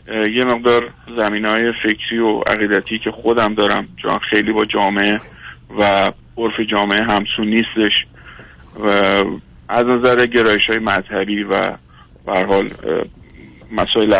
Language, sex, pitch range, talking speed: Persian, male, 100-125 Hz, 110 wpm